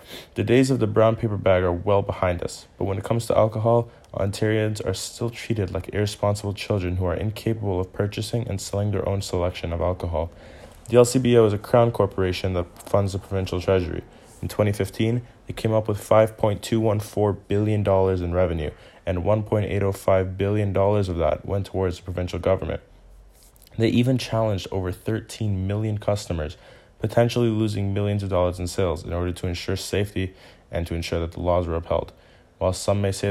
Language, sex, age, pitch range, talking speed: English, male, 20-39, 90-110 Hz, 175 wpm